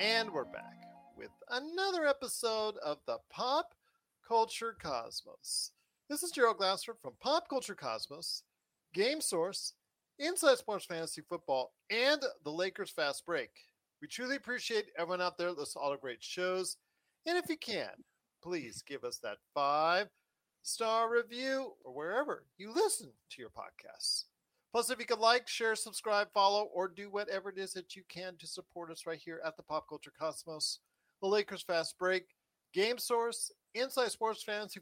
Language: English